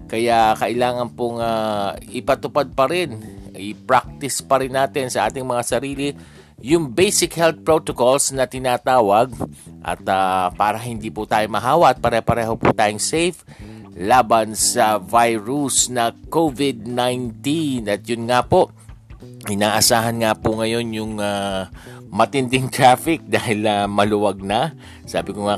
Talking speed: 130 wpm